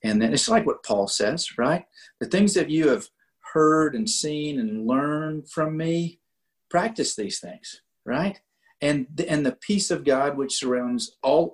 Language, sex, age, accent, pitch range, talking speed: English, male, 40-59, American, 125-185 Hz, 175 wpm